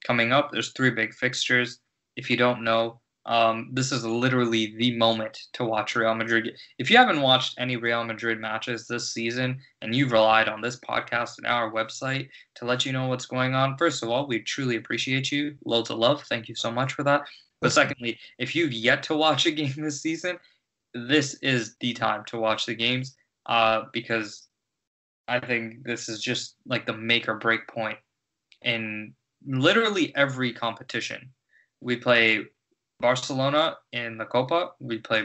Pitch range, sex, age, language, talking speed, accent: 115-130 Hz, male, 20-39, English, 175 wpm, American